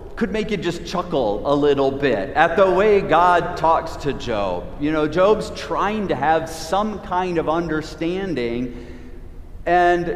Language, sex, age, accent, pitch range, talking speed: English, male, 40-59, American, 160-215 Hz, 155 wpm